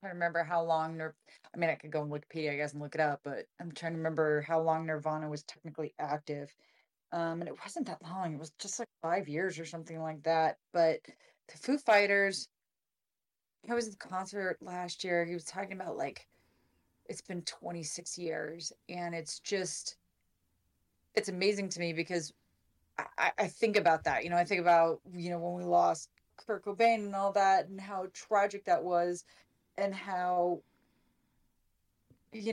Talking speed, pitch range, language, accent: 185 wpm, 160-190 Hz, English, American